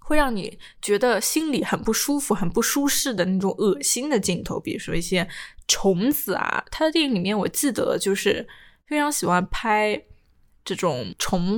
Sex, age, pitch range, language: female, 10-29, 185-240 Hz, Chinese